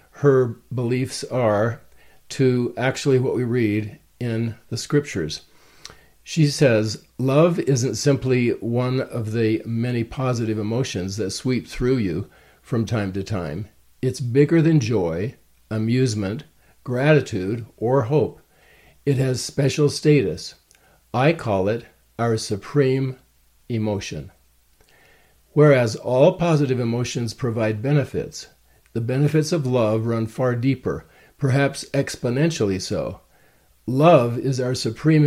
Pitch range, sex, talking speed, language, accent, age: 105-135 Hz, male, 115 wpm, English, American, 50-69